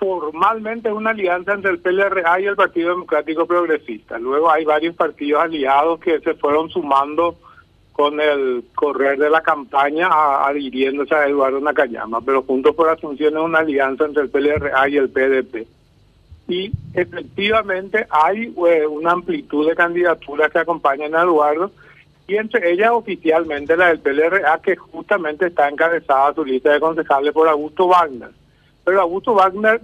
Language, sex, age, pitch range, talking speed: Spanish, male, 60-79, 145-180 Hz, 155 wpm